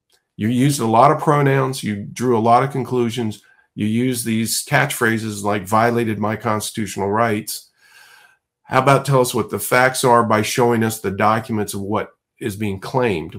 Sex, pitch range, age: male, 100-120 Hz, 50-69